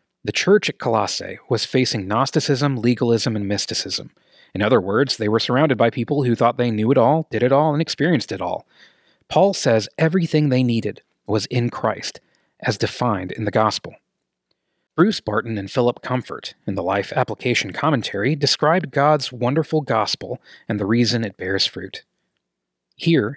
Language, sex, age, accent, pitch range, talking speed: English, male, 30-49, American, 110-145 Hz, 165 wpm